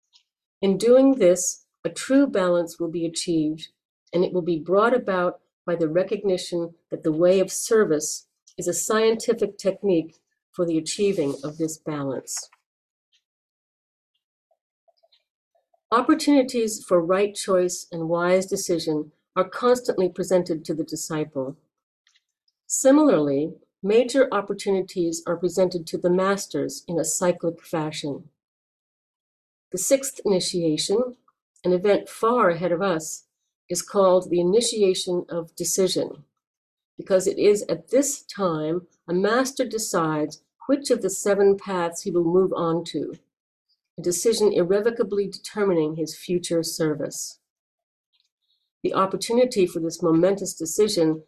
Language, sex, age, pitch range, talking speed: English, female, 50-69, 165-210 Hz, 125 wpm